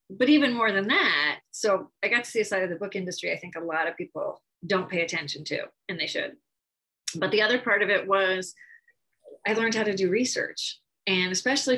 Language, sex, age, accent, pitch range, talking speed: English, female, 30-49, American, 180-235 Hz, 225 wpm